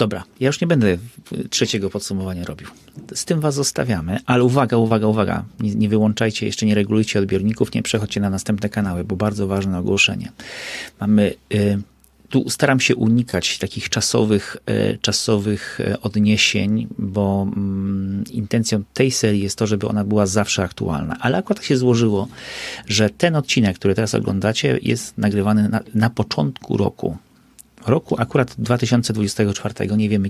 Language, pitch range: Polish, 100-115 Hz